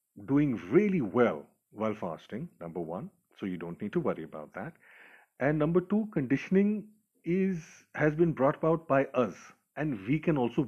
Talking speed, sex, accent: 170 wpm, male, Indian